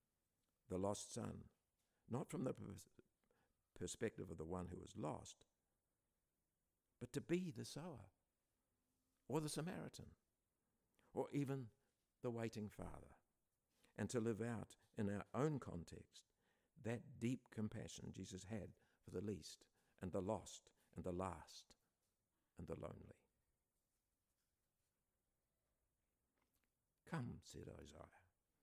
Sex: male